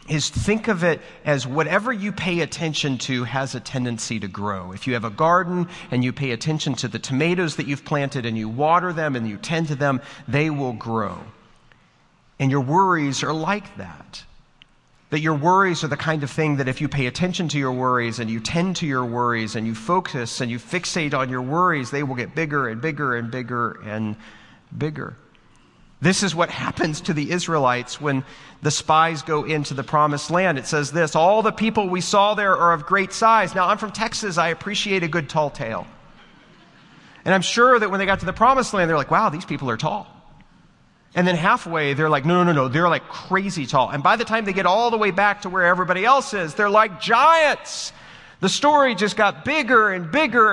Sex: male